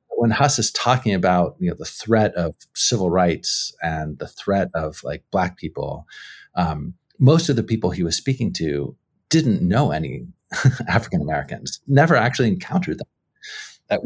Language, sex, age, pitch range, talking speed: English, male, 40-59, 90-125 Hz, 160 wpm